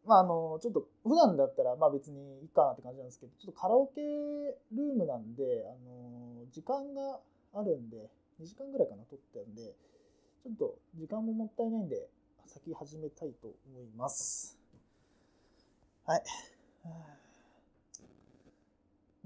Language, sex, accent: Japanese, male, native